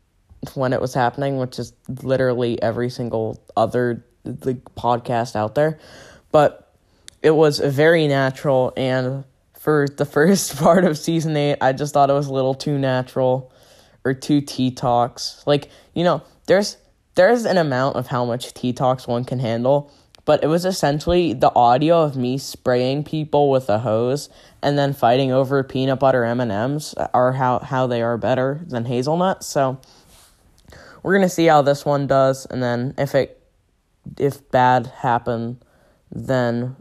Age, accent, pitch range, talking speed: 10-29, American, 125-145 Hz, 160 wpm